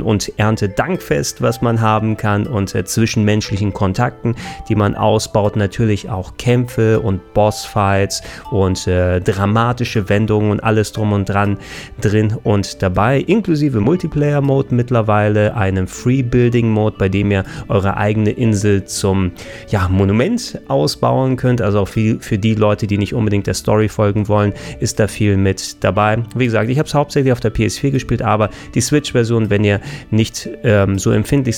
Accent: German